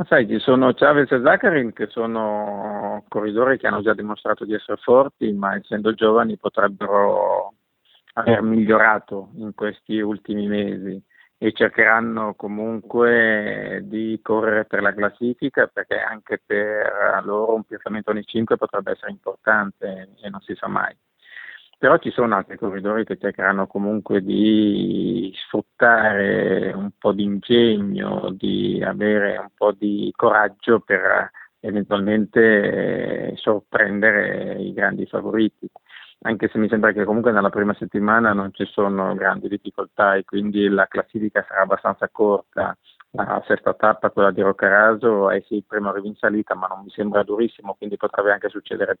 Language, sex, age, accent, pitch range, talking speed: Italian, male, 50-69, native, 100-110 Hz, 145 wpm